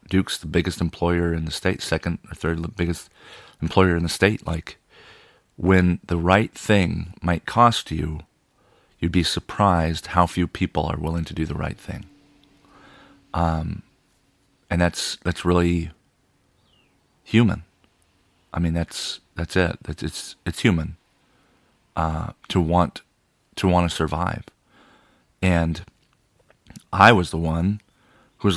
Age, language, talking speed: 40-59, English, 140 wpm